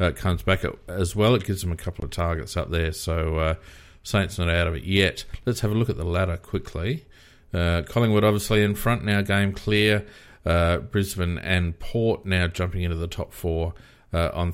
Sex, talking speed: male, 205 wpm